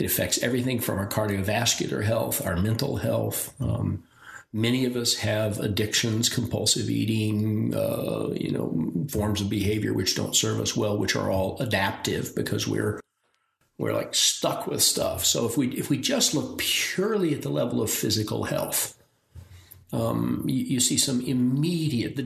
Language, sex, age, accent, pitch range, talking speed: English, male, 50-69, American, 105-140 Hz, 165 wpm